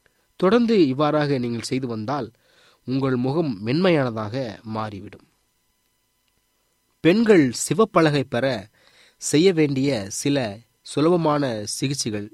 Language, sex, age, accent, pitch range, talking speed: Tamil, male, 30-49, native, 110-155 Hz, 85 wpm